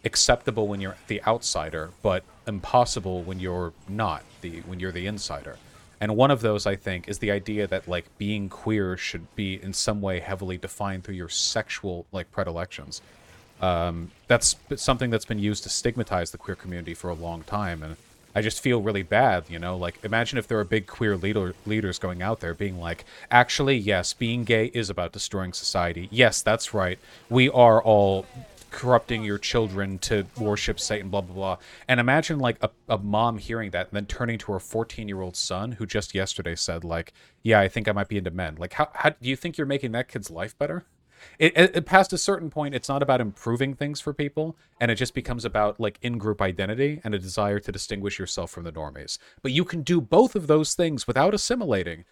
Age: 30-49